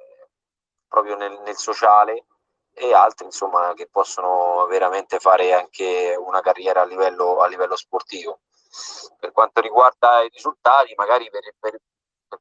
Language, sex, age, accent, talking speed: Italian, male, 20-39, native, 135 wpm